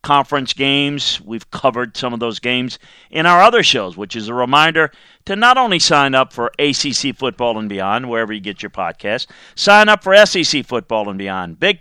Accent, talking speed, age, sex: American, 200 wpm, 50-69, male